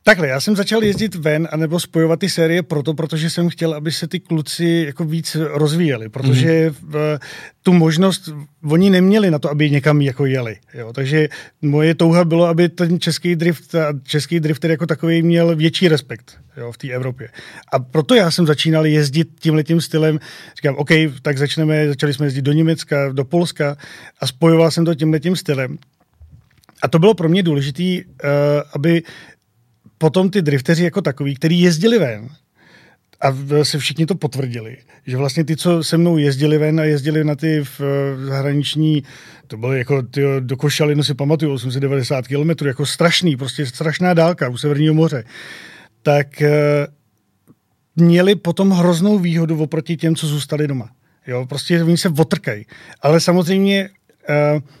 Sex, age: male, 40-59